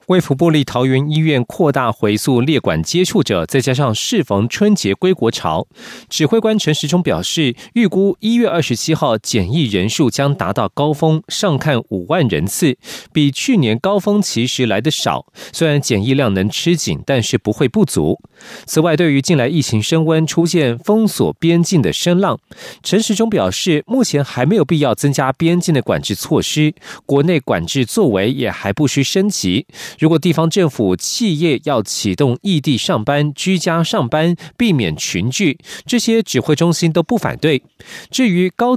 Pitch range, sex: 130-180 Hz, male